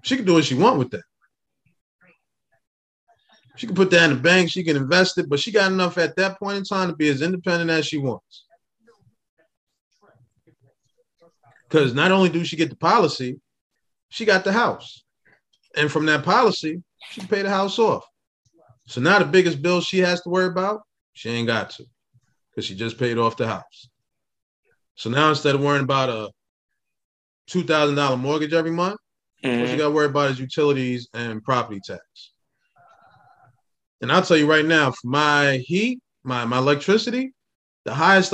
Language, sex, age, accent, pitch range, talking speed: English, male, 20-39, American, 130-190 Hz, 180 wpm